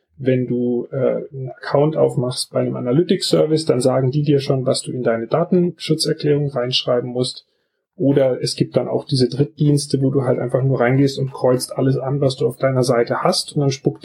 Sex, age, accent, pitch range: male, 30-49, German, 130-150 Hz